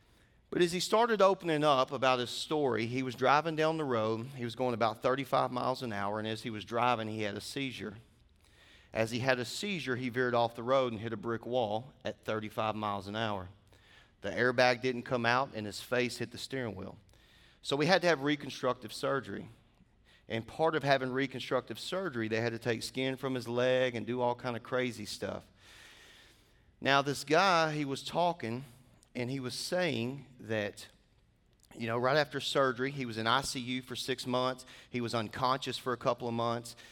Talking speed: 200 wpm